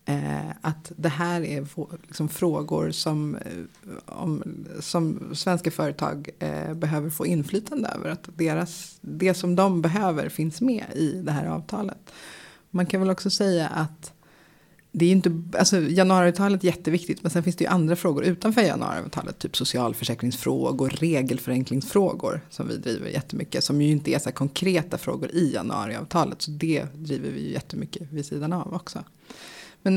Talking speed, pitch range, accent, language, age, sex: 140 wpm, 150-185 Hz, native, Swedish, 30-49, female